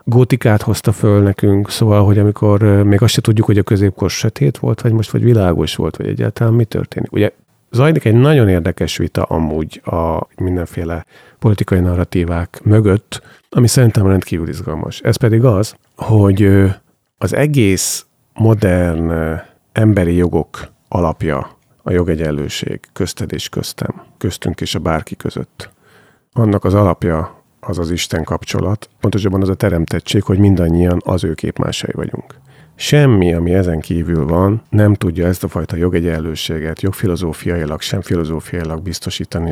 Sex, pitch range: male, 85-110 Hz